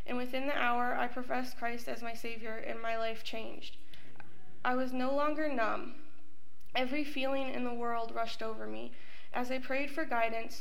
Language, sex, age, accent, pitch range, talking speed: English, female, 20-39, American, 230-260 Hz, 180 wpm